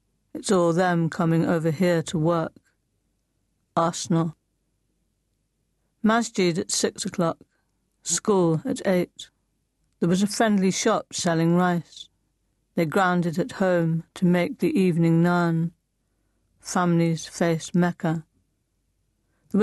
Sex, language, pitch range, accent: female, English, 155-185 Hz, British